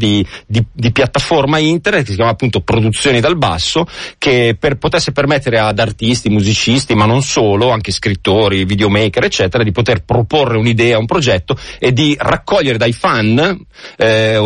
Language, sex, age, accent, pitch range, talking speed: Italian, male, 40-59, native, 110-140 Hz, 160 wpm